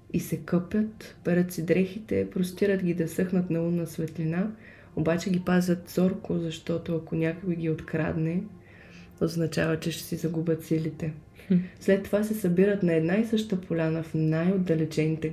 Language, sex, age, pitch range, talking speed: Bulgarian, female, 20-39, 160-185 Hz, 155 wpm